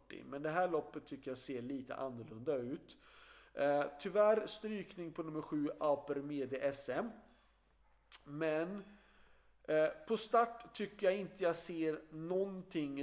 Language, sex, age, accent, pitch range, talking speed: Swedish, male, 40-59, native, 140-180 Hz, 120 wpm